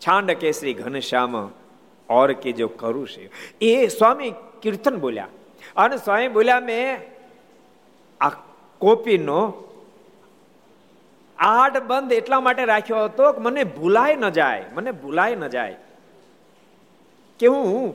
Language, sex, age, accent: Gujarati, male, 50-69, native